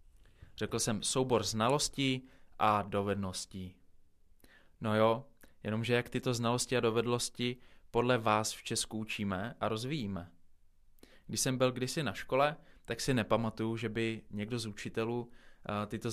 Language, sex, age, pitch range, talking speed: Czech, male, 20-39, 100-115 Hz, 135 wpm